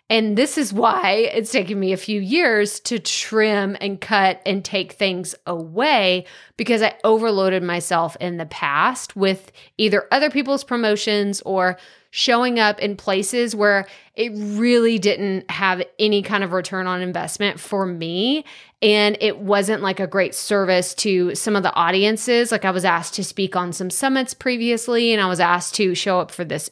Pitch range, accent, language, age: 185-230 Hz, American, English, 20-39